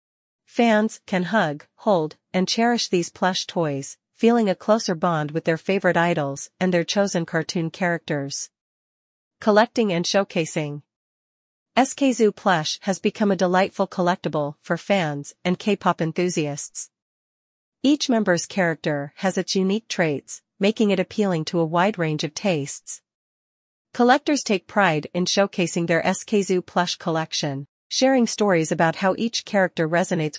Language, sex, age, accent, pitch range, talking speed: English, female, 40-59, American, 160-205 Hz, 135 wpm